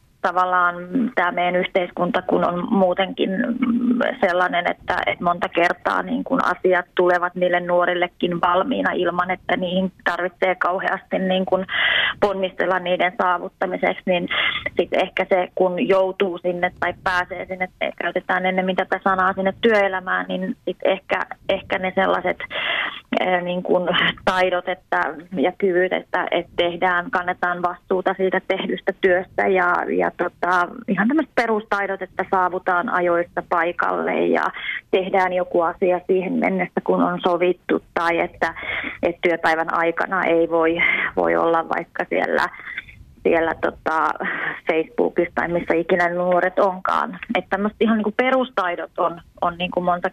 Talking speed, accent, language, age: 135 wpm, native, Finnish, 20-39